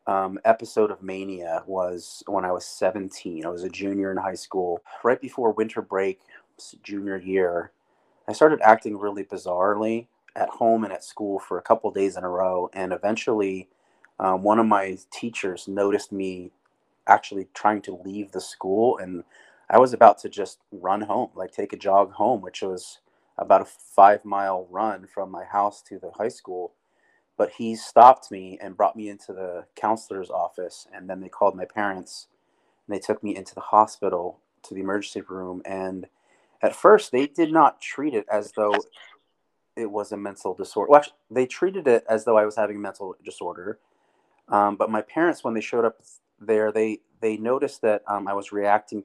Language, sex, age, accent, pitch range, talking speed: English, male, 30-49, American, 95-110 Hz, 185 wpm